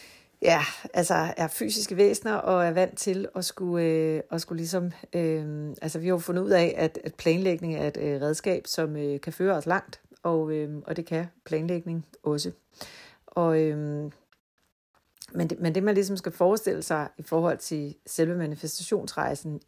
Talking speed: 175 wpm